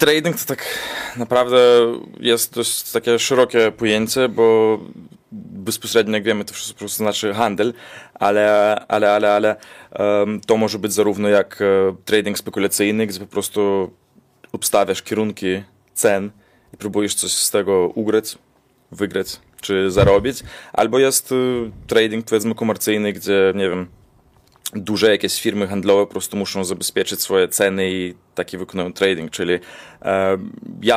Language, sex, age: Polish, male, 20-39